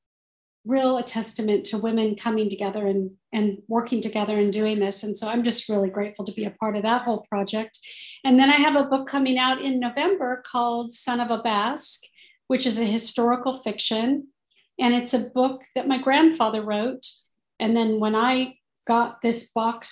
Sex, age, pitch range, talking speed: female, 40-59, 225-265 Hz, 190 wpm